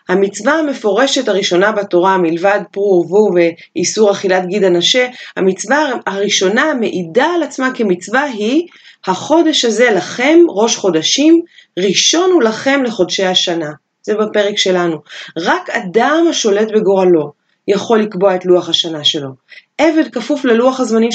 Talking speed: 130 wpm